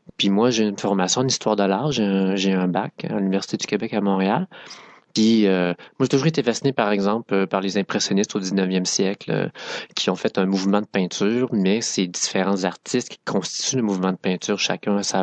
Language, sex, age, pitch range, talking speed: English, male, 30-49, 95-110 Hz, 215 wpm